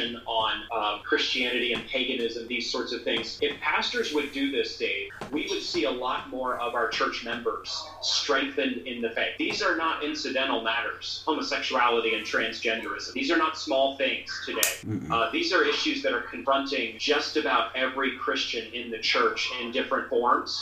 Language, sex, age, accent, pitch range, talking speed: English, male, 30-49, American, 120-155 Hz, 175 wpm